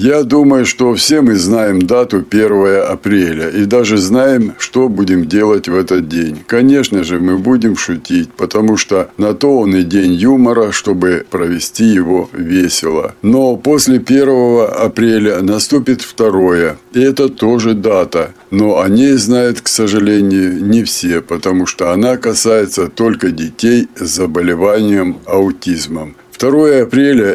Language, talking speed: Russian, 140 wpm